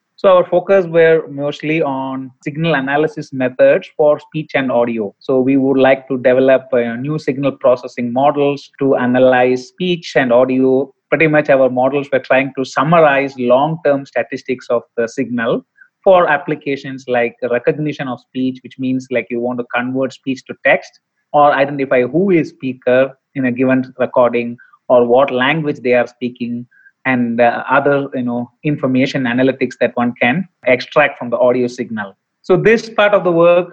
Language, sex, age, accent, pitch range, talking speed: English, male, 30-49, Indian, 125-155 Hz, 165 wpm